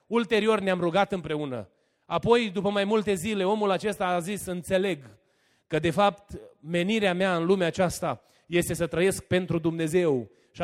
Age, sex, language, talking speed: 30-49, male, Romanian, 160 wpm